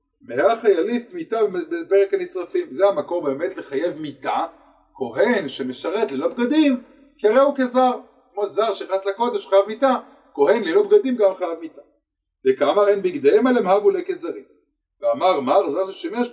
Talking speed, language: 145 wpm, Hebrew